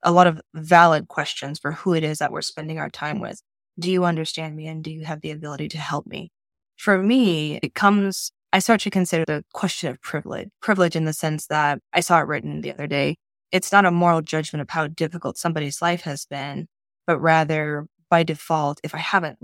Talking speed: 220 wpm